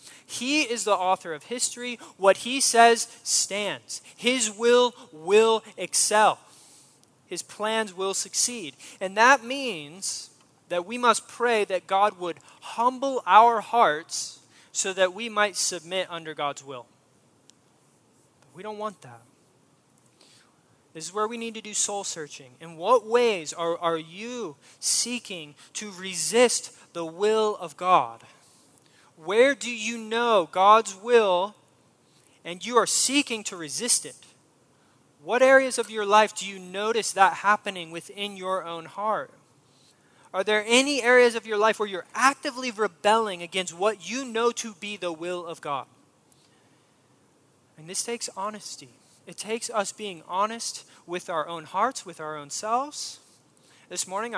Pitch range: 170-230 Hz